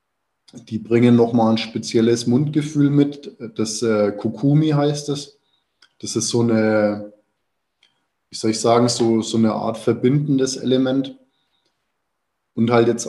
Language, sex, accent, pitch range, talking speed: German, male, German, 115-140 Hz, 140 wpm